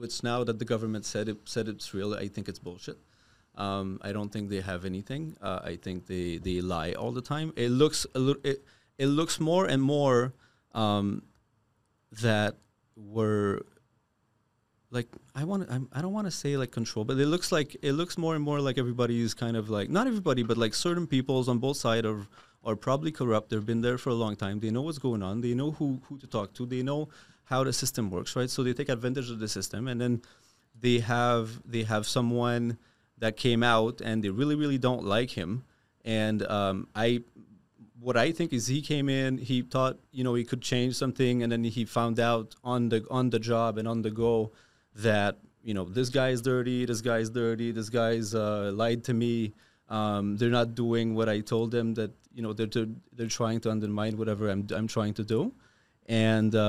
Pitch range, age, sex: 110-130 Hz, 30-49, male